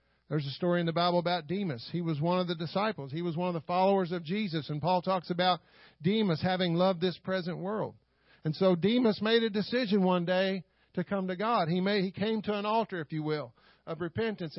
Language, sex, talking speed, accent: English, male, 230 wpm, American